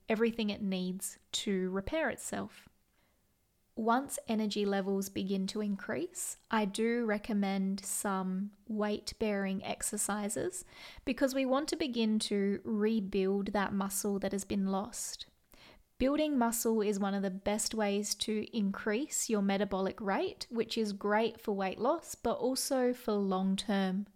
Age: 20-39